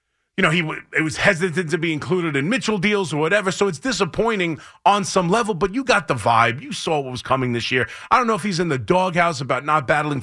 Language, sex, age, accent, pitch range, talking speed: English, male, 30-49, American, 145-200 Hz, 260 wpm